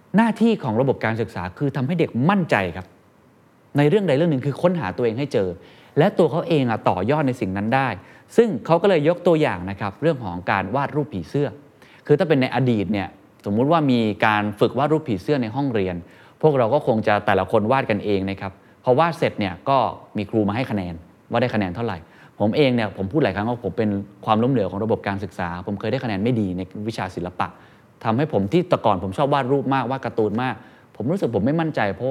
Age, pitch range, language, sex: 20-39, 105-155 Hz, Thai, male